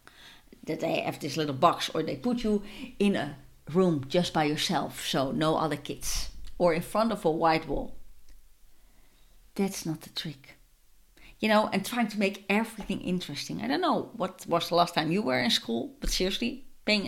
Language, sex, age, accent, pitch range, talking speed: English, female, 40-59, Dutch, 170-275 Hz, 190 wpm